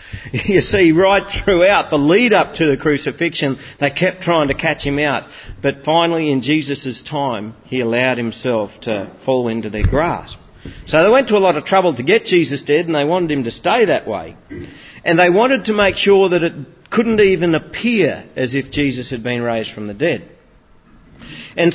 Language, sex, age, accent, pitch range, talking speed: English, male, 40-59, Australian, 130-185 Hz, 195 wpm